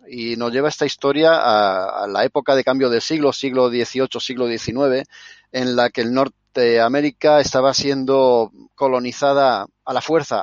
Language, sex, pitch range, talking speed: Spanish, male, 120-145 Hz, 165 wpm